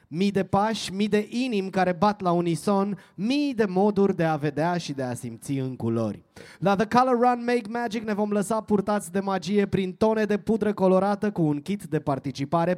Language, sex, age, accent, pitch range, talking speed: Romanian, male, 20-39, native, 165-215 Hz, 205 wpm